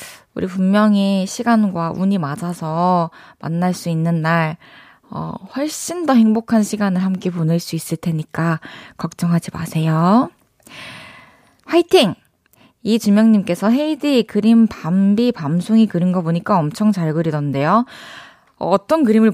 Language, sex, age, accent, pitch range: Korean, female, 20-39, native, 165-250 Hz